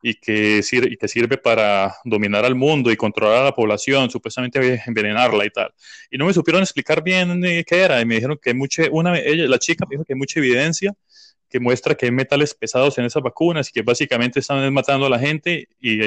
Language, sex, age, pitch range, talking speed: Spanish, male, 20-39, 120-155 Hz, 225 wpm